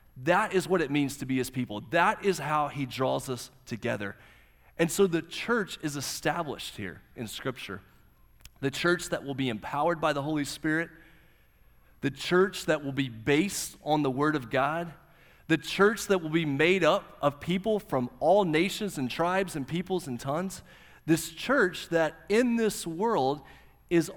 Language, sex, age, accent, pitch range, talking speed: English, male, 30-49, American, 125-175 Hz, 175 wpm